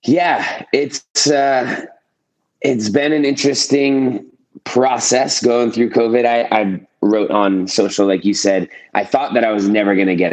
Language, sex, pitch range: English, male, 95-120 Hz